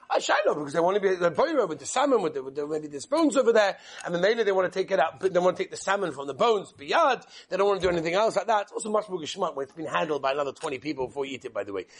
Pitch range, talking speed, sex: 195-245 Hz, 345 wpm, male